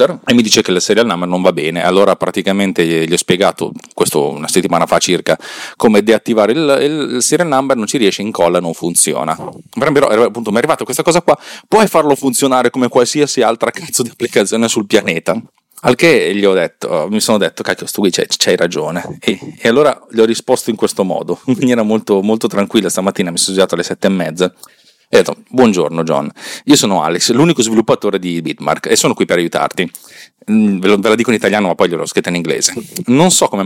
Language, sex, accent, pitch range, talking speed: Italian, male, native, 90-115 Hz, 210 wpm